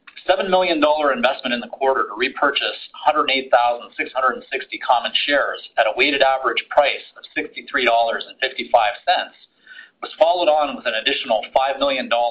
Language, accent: English, American